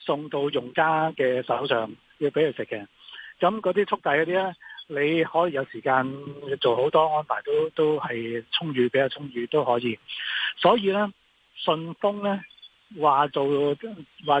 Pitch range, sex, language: 135-190 Hz, male, Chinese